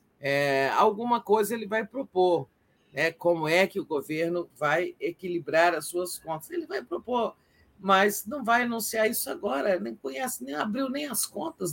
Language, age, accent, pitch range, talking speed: Portuguese, 50-69, Brazilian, 145-195 Hz, 170 wpm